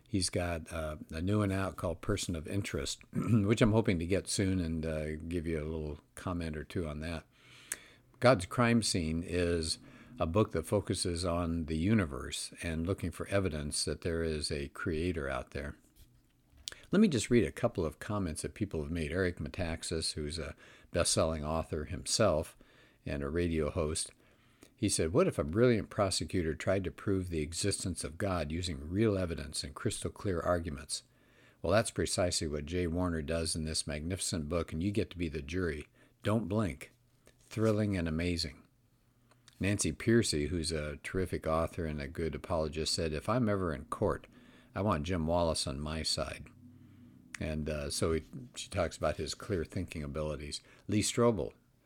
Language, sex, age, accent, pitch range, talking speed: English, male, 50-69, American, 80-105 Hz, 175 wpm